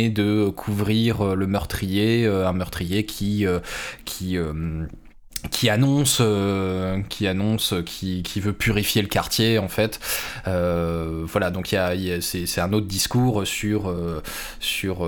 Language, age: French, 20-39